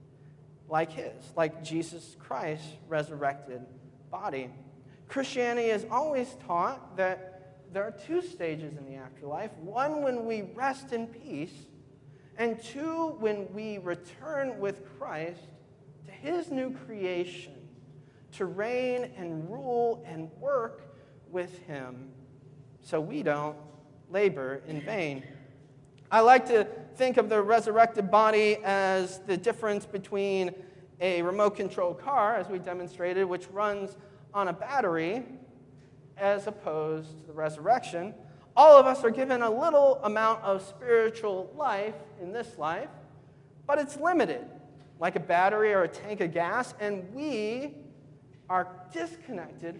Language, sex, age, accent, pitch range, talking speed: English, male, 40-59, American, 150-215 Hz, 130 wpm